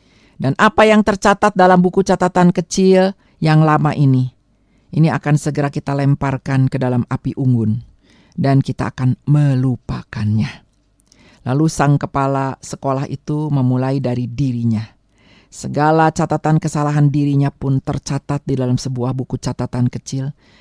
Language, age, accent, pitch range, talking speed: Indonesian, 50-69, native, 135-185 Hz, 130 wpm